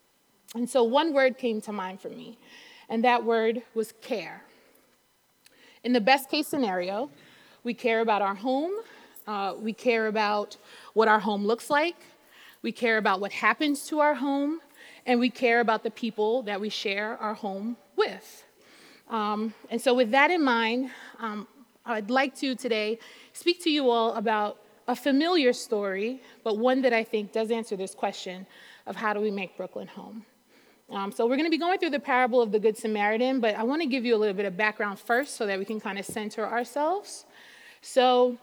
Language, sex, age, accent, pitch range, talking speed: English, female, 30-49, American, 215-255 Hz, 195 wpm